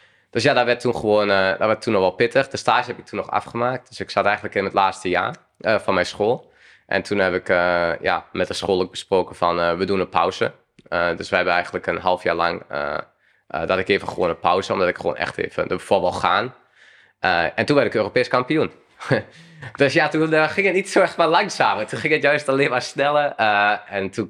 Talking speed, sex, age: 250 wpm, male, 20-39